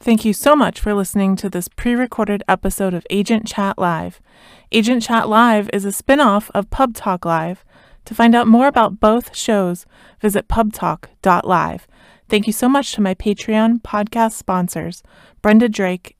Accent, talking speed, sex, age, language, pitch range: American, 170 wpm, female, 20-39, English, 185-225 Hz